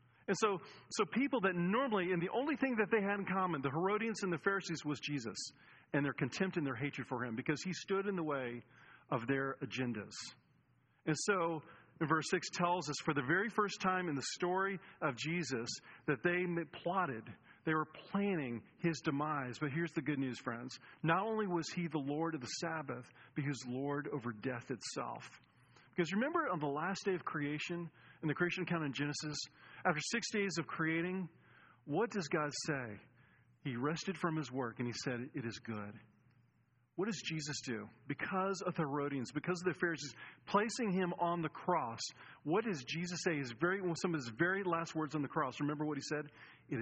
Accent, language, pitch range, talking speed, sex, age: American, English, 130-180 Hz, 200 wpm, male, 40-59